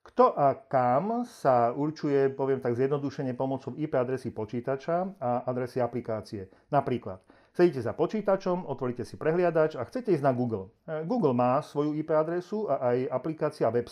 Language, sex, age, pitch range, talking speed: Slovak, male, 40-59, 120-150 Hz, 155 wpm